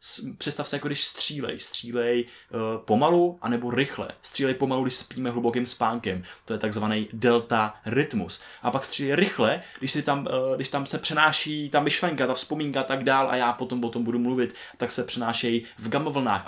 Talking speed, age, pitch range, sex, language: 170 wpm, 20-39, 115-130 Hz, male, Czech